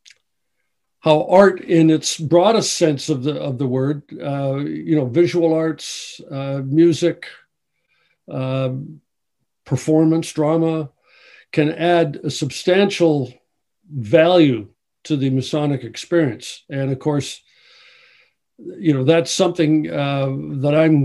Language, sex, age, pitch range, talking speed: English, male, 60-79, 135-165 Hz, 115 wpm